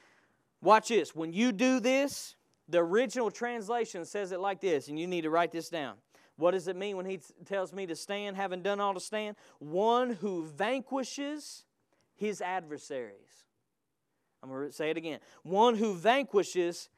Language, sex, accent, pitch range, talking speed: English, male, American, 185-290 Hz, 175 wpm